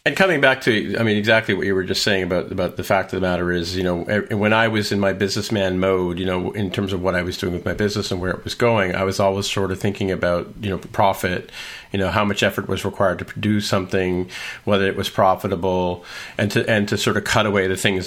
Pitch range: 95-105 Hz